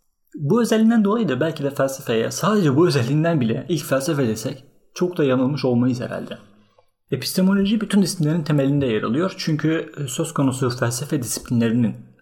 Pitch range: 125-170 Hz